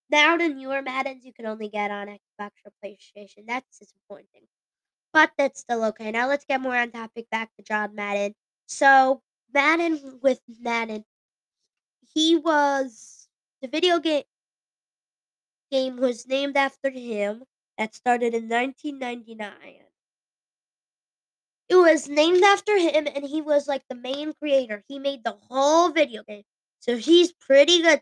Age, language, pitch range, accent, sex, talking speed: 20-39, English, 220-285 Hz, American, female, 145 wpm